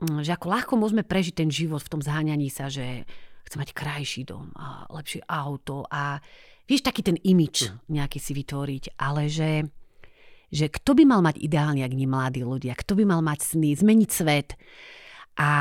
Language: Slovak